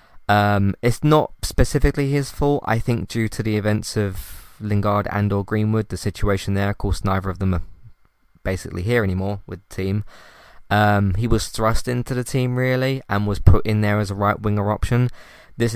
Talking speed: 190 wpm